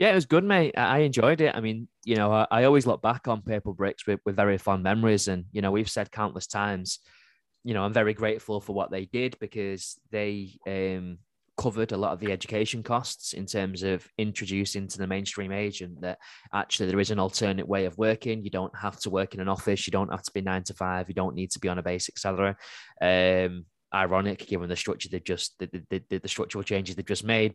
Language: English